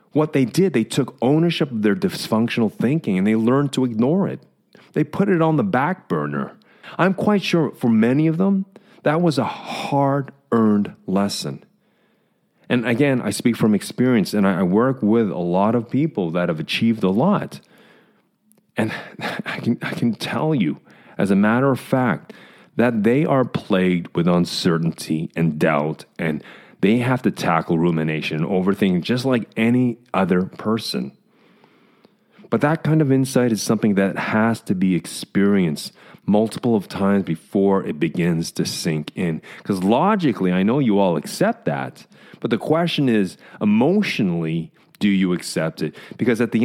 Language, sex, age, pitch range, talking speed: English, male, 30-49, 100-155 Hz, 165 wpm